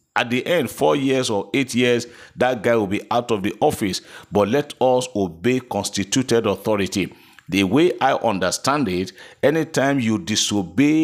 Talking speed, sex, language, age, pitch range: 165 wpm, male, English, 50-69, 105-135 Hz